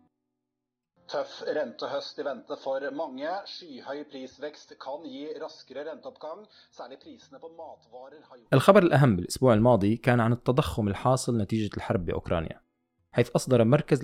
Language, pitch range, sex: Arabic, 100-135 Hz, male